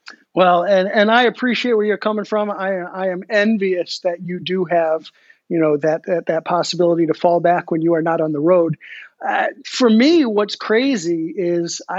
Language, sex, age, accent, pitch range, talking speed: English, male, 50-69, American, 175-225 Hz, 195 wpm